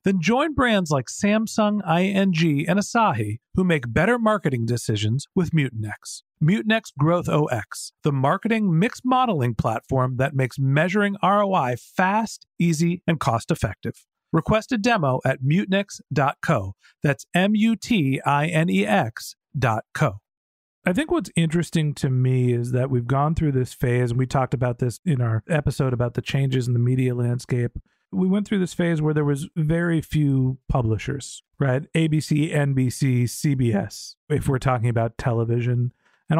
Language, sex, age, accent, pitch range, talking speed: English, male, 40-59, American, 125-175 Hz, 145 wpm